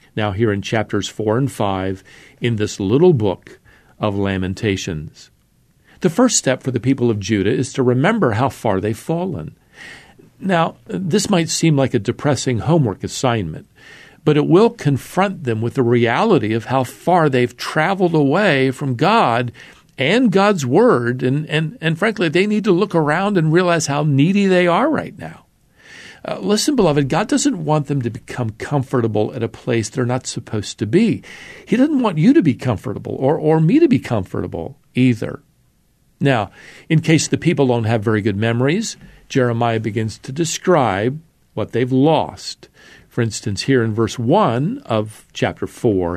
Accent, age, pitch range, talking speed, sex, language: American, 50-69, 115-165 Hz, 170 wpm, male, English